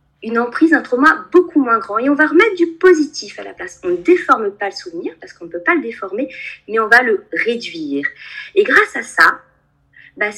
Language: French